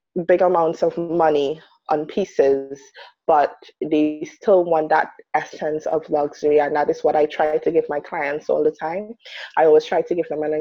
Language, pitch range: English, 155-185 Hz